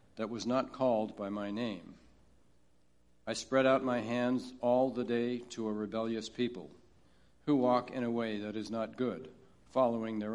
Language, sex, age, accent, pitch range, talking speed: English, male, 60-79, American, 105-125 Hz, 175 wpm